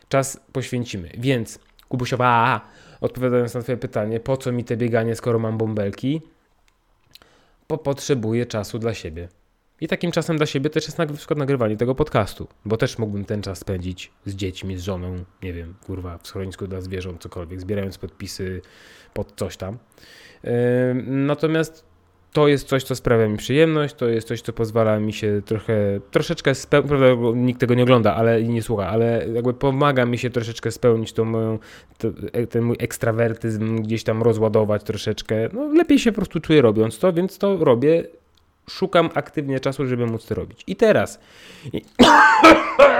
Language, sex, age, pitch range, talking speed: Polish, male, 20-39, 105-130 Hz, 160 wpm